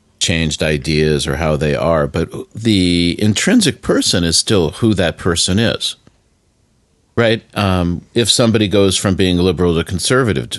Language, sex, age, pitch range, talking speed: English, male, 40-59, 75-110 Hz, 145 wpm